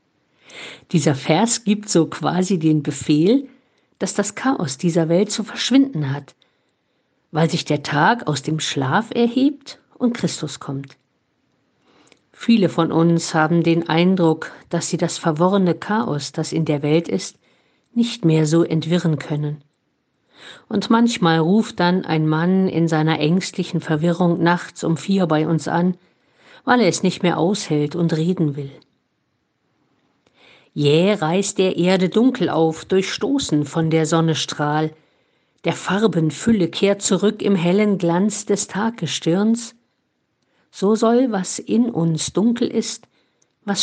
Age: 50-69